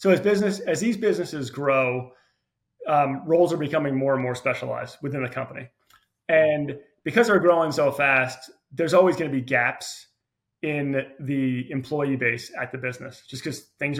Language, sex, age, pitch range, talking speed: English, male, 30-49, 130-150 Hz, 170 wpm